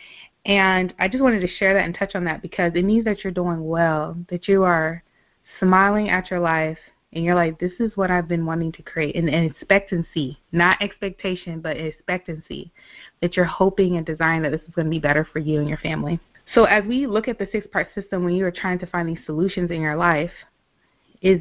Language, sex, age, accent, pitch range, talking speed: English, female, 20-39, American, 165-195 Hz, 225 wpm